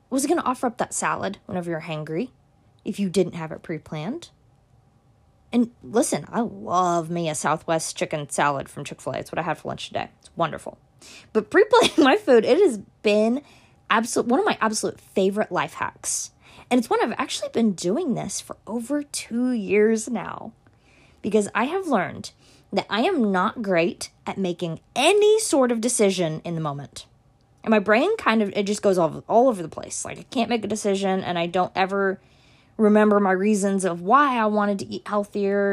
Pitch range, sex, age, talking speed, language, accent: 165-225 Hz, female, 20-39, 195 wpm, English, American